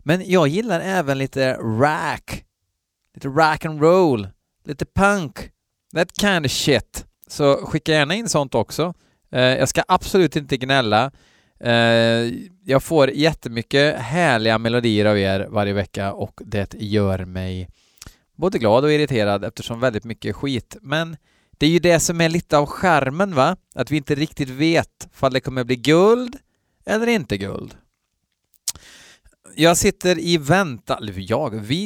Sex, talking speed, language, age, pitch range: male, 145 wpm, Swedish, 30-49, 110-150 Hz